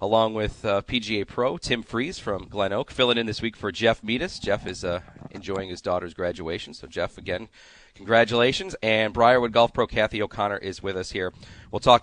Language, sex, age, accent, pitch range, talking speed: English, male, 30-49, American, 105-125 Hz, 200 wpm